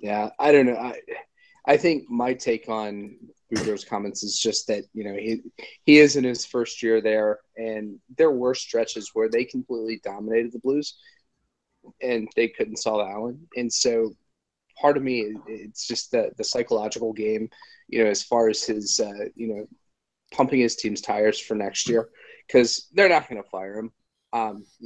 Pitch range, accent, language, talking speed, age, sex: 110-135 Hz, American, English, 180 wpm, 30-49, male